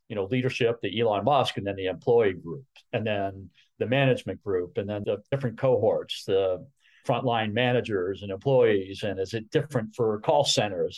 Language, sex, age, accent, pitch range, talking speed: English, male, 40-59, American, 110-145 Hz, 180 wpm